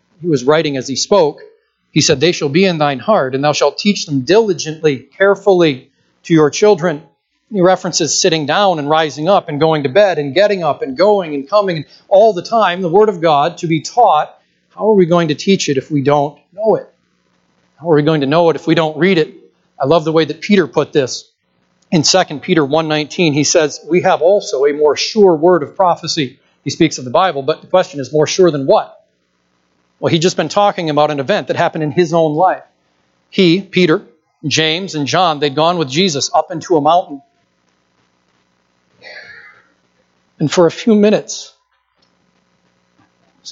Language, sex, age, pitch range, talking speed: English, male, 40-59, 145-185 Hz, 200 wpm